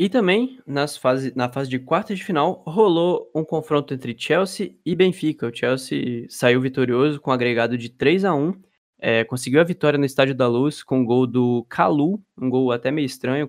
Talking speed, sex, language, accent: 205 wpm, male, Portuguese, Brazilian